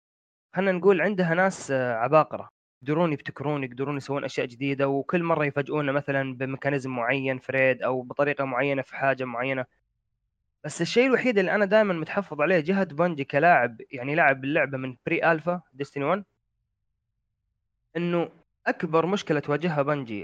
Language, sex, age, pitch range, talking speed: Arabic, male, 20-39, 135-175 Hz, 140 wpm